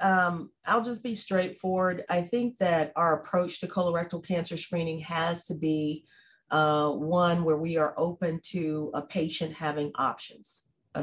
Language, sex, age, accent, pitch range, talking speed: English, female, 40-59, American, 150-180 Hz, 160 wpm